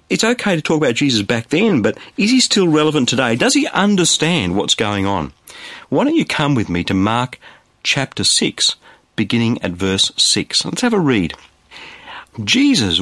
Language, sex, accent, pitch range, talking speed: English, male, Australian, 95-140 Hz, 180 wpm